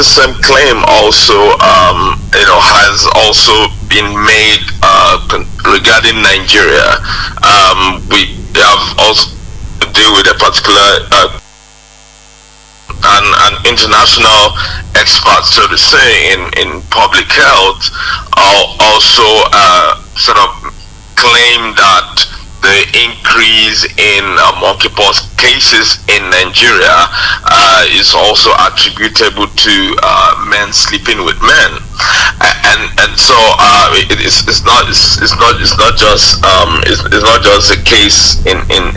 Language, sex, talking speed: English, male, 125 wpm